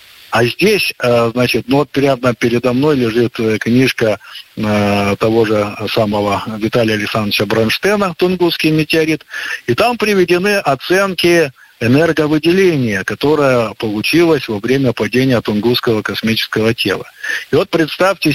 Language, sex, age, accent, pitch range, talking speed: Russian, male, 50-69, native, 110-150 Hz, 110 wpm